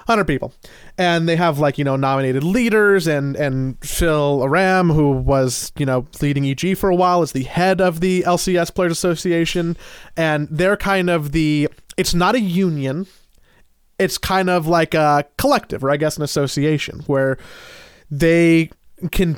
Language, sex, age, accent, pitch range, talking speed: English, male, 30-49, American, 135-170 Hz, 165 wpm